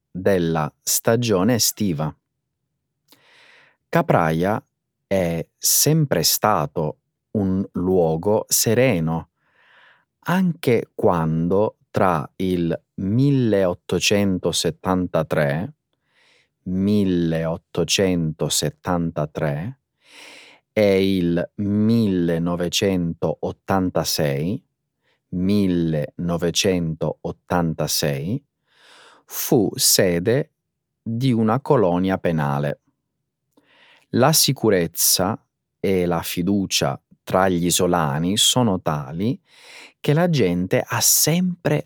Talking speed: 60 wpm